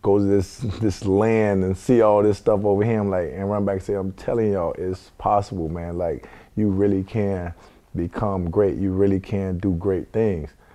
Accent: American